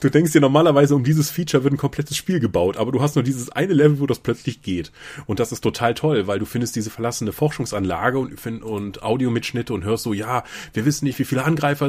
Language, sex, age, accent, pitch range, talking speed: German, male, 30-49, German, 100-140 Hz, 235 wpm